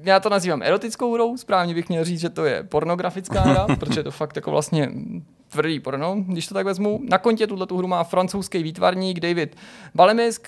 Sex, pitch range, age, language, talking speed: male, 155-190 Hz, 20-39, Czech, 200 wpm